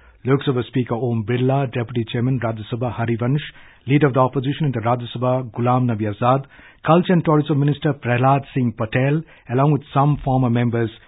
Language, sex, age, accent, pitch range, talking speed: English, male, 50-69, Indian, 120-140 Hz, 175 wpm